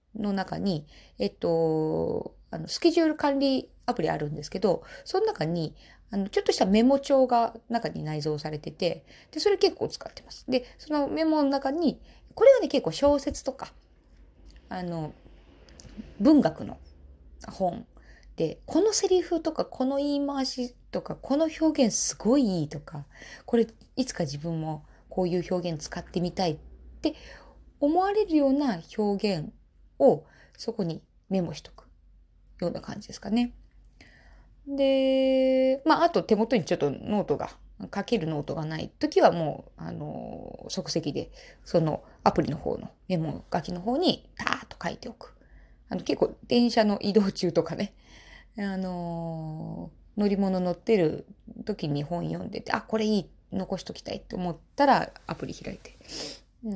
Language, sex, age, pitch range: Japanese, female, 20-39, 165-270 Hz